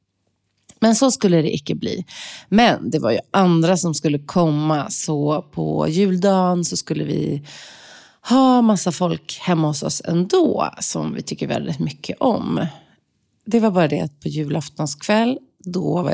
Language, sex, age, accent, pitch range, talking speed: Swedish, female, 30-49, native, 155-200 Hz, 155 wpm